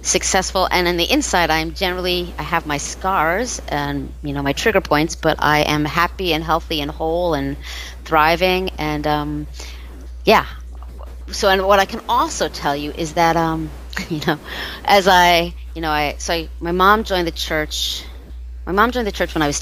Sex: female